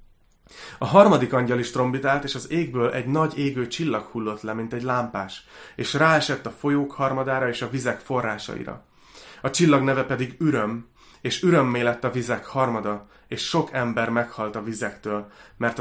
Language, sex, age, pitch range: Hungarian, male, 30-49, 110-140 Hz